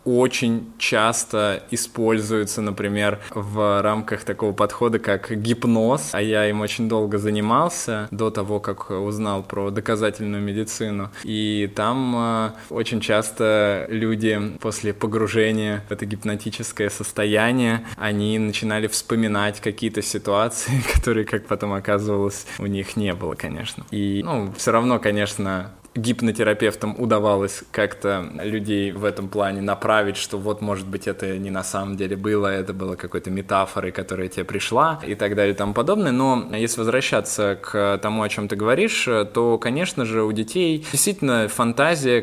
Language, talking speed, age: Russian, 140 wpm, 20-39